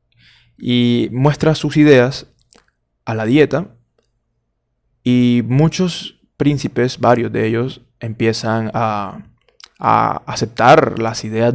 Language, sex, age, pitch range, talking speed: Spanish, male, 20-39, 115-150 Hz, 100 wpm